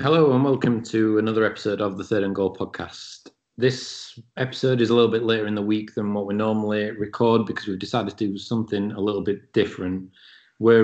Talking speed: 210 wpm